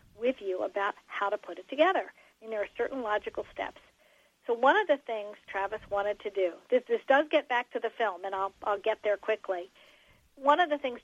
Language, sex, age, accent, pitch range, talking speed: English, female, 50-69, American, 200-260 Hz, 235 wpm